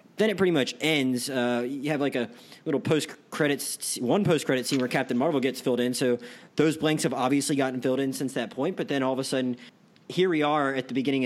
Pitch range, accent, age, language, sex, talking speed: 125-160 Hz, American, 30-49, English, male, 235 wpm